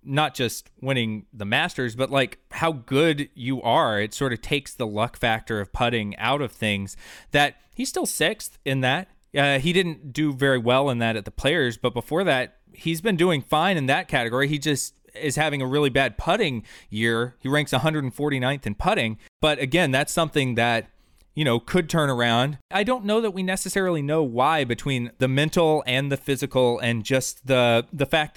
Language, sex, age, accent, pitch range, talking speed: English, male, 20-39, American, 120-155 Hz, 195 wpm